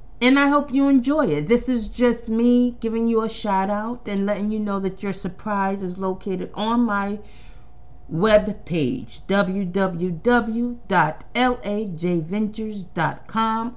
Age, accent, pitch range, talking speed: 40-59, American, 170-225 Hz, 120 wpm